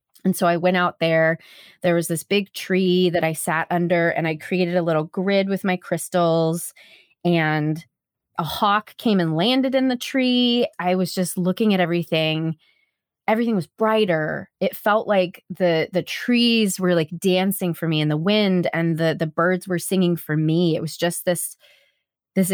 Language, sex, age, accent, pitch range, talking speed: English, female, 20-39, American, 170-195 Hz, 185 wpm